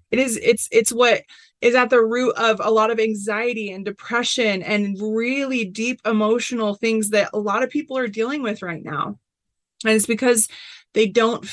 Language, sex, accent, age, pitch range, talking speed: English, female, American, 20-39, 190-225 Hz, 185 wpm